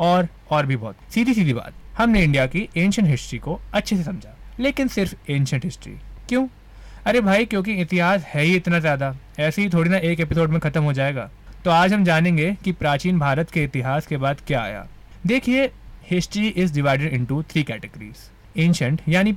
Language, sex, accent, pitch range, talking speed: Hindi, male, native, 140-185 Hz, 180 wpm